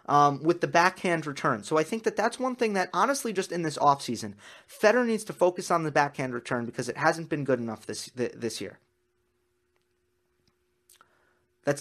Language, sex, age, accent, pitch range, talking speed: English, male, 30-49, American, 110-180 Hz, 185 wpm